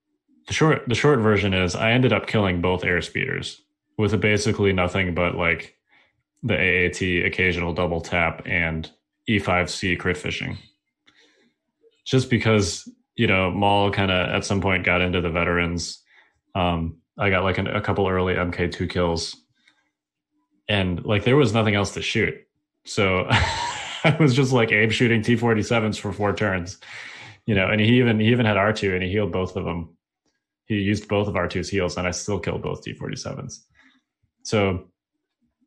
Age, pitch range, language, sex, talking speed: 20-39, 90-120 Hz, English, male, 165 wpm